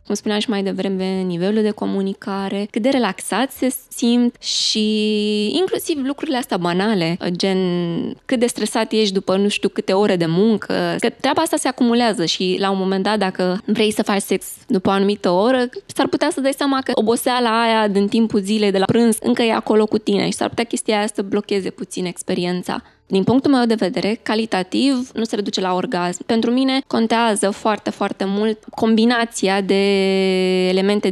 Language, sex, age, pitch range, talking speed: Romanian, female, 20-39, 195-235 Hz, 185 wpm